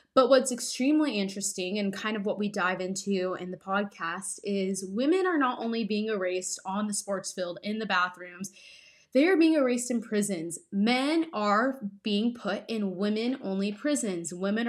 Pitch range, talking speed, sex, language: 195-255 Hz, 170 wpm, female, English